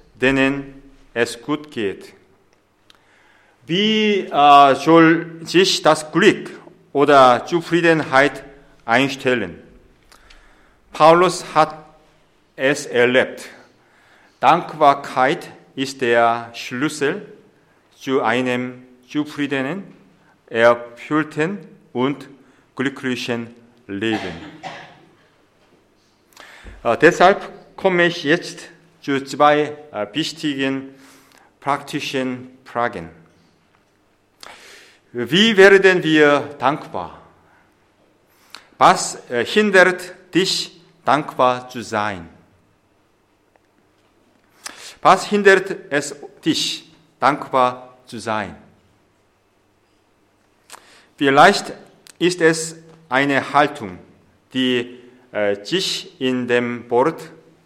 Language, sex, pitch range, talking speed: English, male, 120-160 Hz, 70 wpm